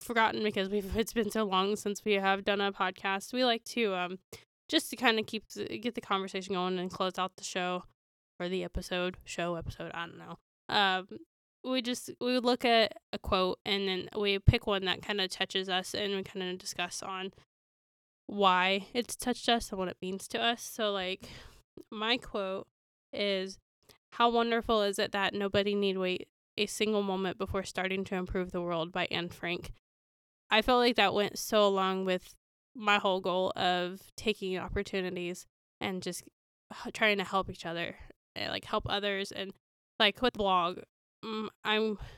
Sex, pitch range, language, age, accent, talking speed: female, 185-220 Hz, English, 10-29, American, 180 wpm